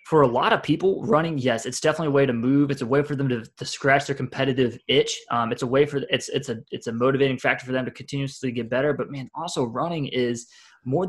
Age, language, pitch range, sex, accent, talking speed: 20-39, English, 125-145 Hz, male, American, 260 wpm